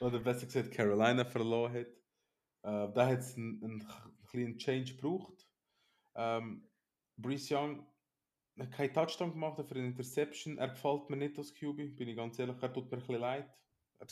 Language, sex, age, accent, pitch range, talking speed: German, male, 20-39, Austrian, 110-130 Hz, 185 wpm